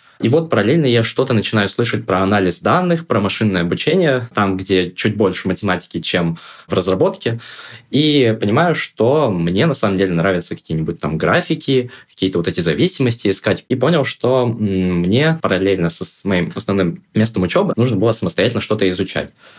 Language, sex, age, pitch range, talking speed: Russian, male, 20-39, 90-115 Hz, 160 wpm